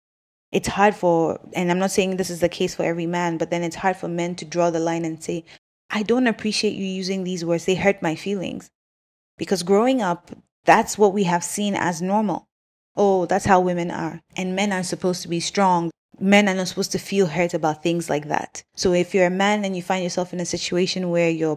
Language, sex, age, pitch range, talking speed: English, female, 20-39, 175-205 Hz, 235 wpm